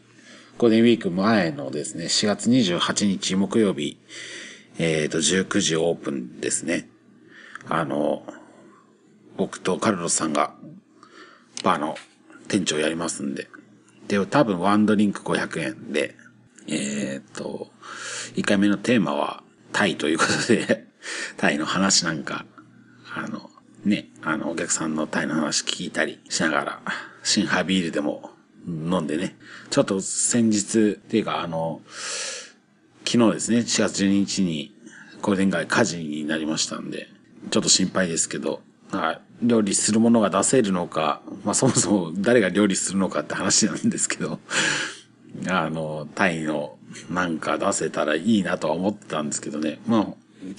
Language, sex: Japanese, male